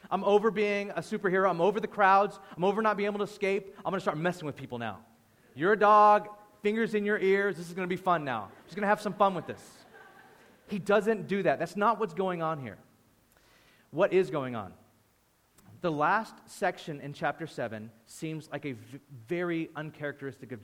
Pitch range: 135-190 Hz